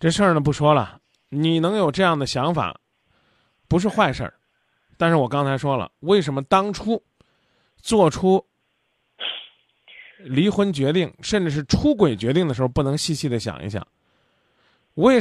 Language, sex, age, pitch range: Chinese, male, 20-39, 130-180 Hz